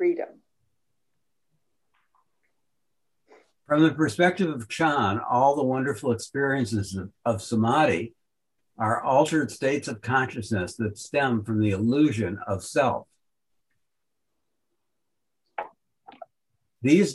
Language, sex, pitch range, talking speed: English, male, 115-145 Hz, 90 wpm